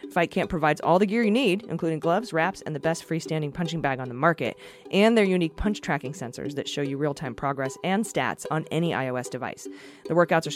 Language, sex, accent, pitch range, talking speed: English, female, American, 145-190 Hz, 225 wpm